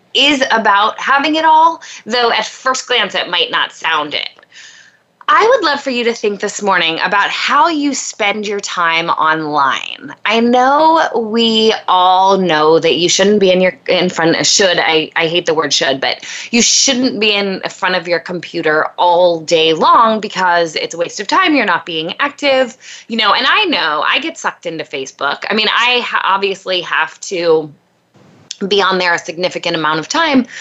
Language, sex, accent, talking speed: English, female, American, 190 wpm